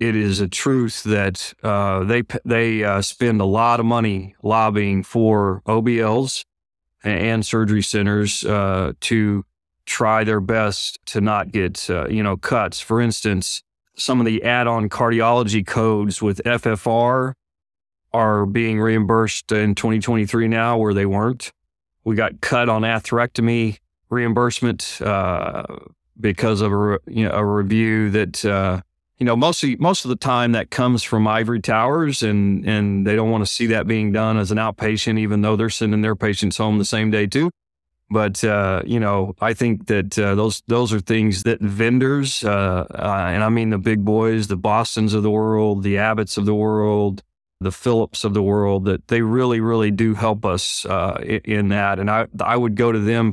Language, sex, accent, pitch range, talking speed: English, male, American, 100-115 Hz, 175 wpm